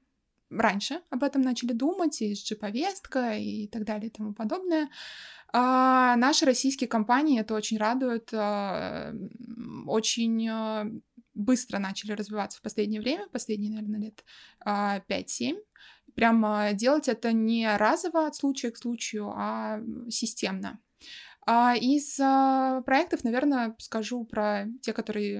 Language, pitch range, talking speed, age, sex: Russian, 210-250 Hz, 120 wpm, 20-39, female